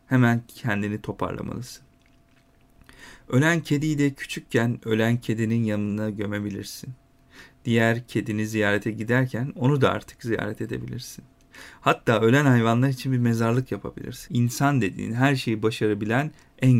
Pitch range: 110-135 Hz